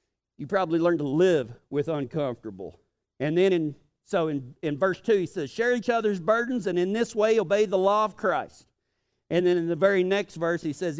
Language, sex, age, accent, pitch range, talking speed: English, male, 50-69, American, 175-255 Hz, 215 wpm